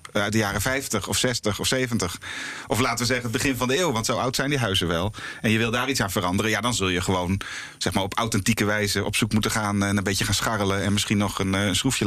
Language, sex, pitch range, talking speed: Dutch, male, 100-125 Hz, 280 wpm